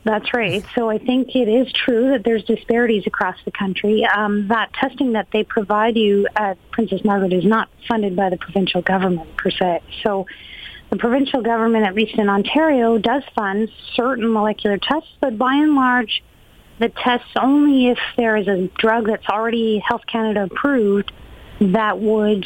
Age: 40-59